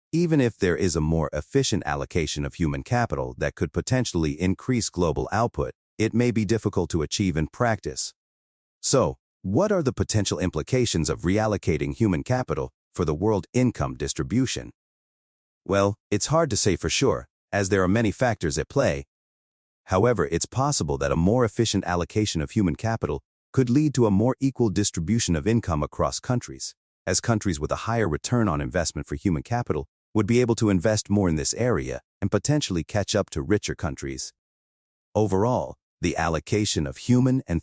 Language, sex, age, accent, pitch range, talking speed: English, male, 40-59, American, 80-115 Hz, 175 wpm